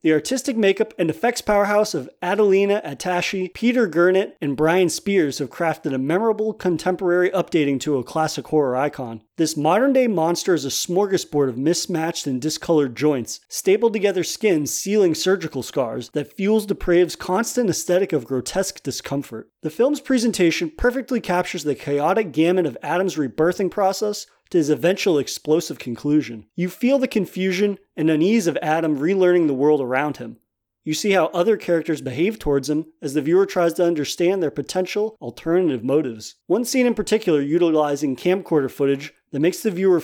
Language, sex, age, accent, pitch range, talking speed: English, male, 30-49, American, 150-200 Hz, 165 wpm